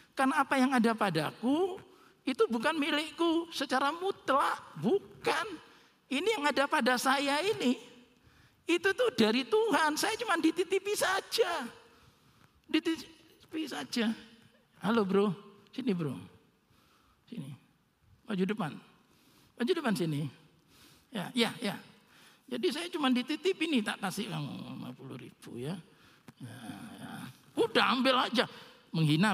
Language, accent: Indonesian, native